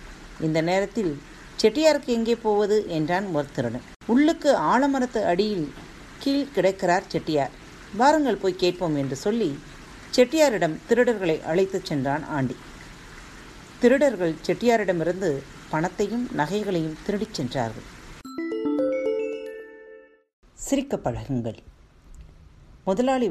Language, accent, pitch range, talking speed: Tamil, native, 140-215 Hz, 80 wpm